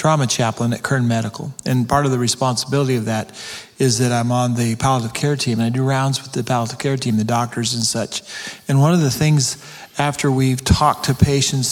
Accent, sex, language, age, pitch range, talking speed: American, male, English, 40-59, 125-140 Hz, 220 wpm